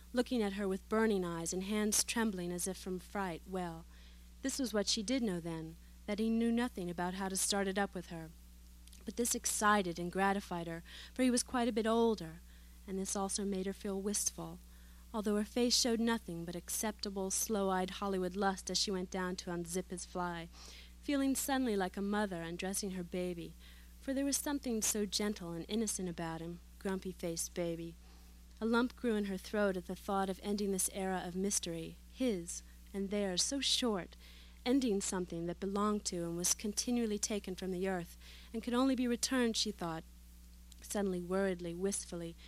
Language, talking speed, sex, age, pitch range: English, 190 wpm, female, 30-49, 170-215 Hz